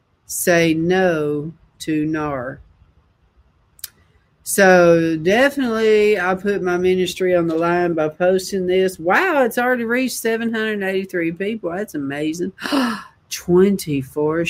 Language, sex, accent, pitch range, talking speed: English, female, American, 150-190 Hz, 105 wpm